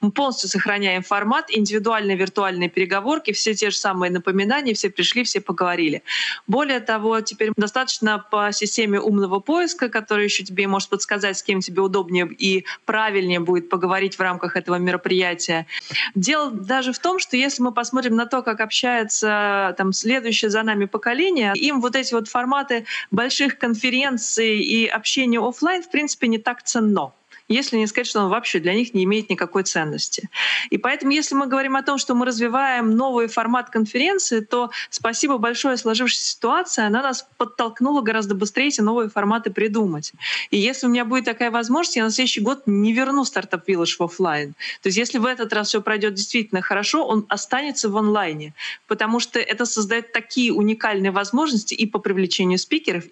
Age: 20-39